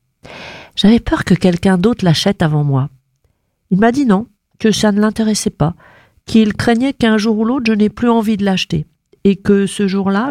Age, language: 50-69, French